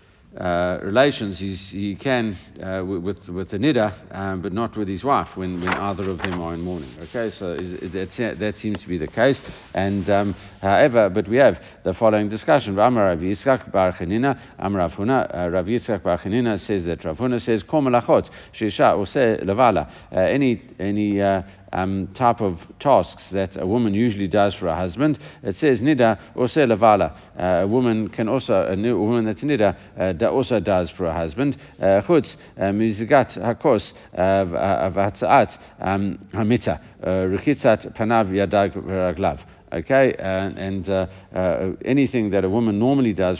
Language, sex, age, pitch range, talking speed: English, male, 60-79, 90-115 Hz, 160 wpm